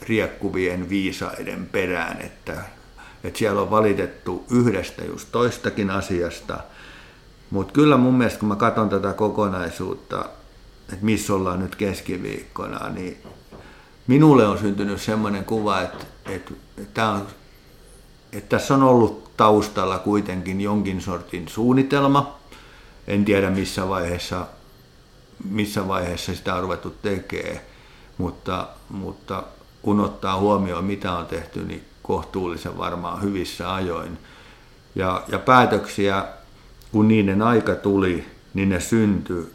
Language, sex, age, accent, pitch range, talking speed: Finnish, male, 50-69, native, 90-110 Hz, 115 wpm